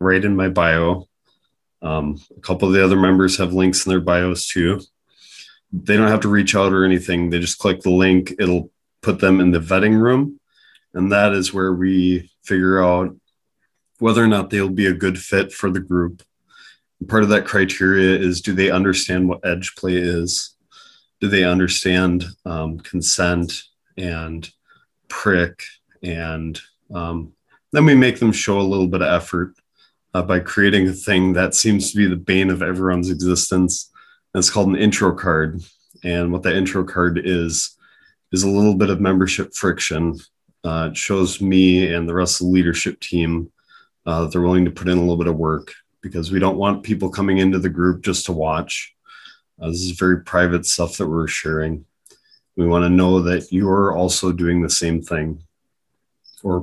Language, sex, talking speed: English, male, 185 wpm